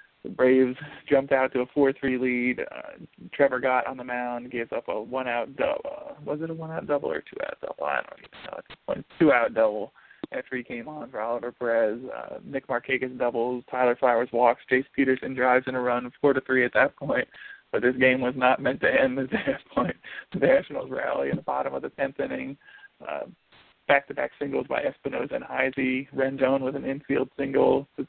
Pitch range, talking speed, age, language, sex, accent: 125-135 Hz, 200 wpm, 20-39, English, male, American